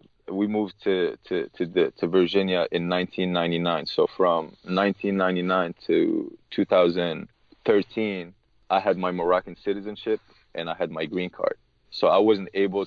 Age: 20-39